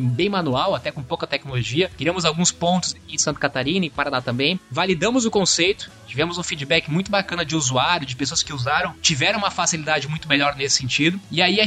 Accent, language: Brazilian, Portuguese